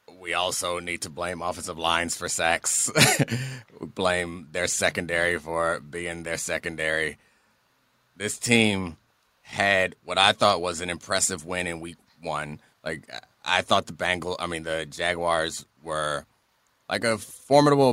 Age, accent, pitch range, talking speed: 30-49, American, 95-145 Hz, 140 wpm